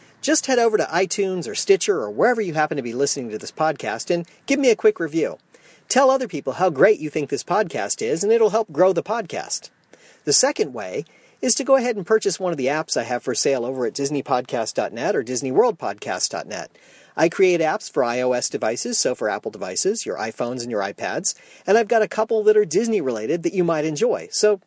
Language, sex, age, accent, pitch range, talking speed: English, male, 40-59, American, 145-230 Hz, 215 wpm